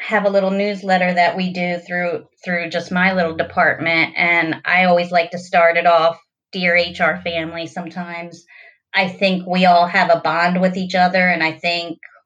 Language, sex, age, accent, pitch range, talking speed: English, female, 30-49, American, 170-190 Hz, 185 wpm